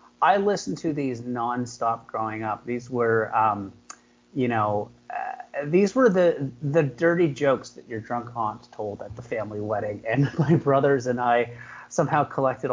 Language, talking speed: English, 165 wpm